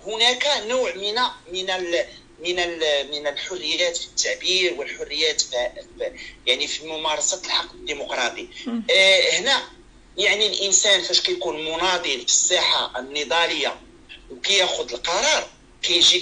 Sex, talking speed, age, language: male, 100 wpm, 40-59, Arabic